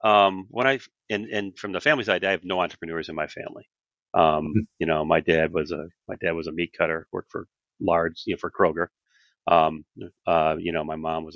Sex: male